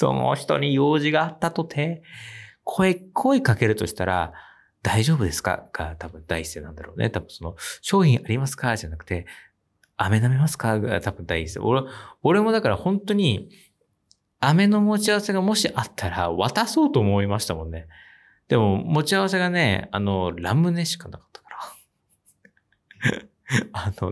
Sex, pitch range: male, 95-145 Hz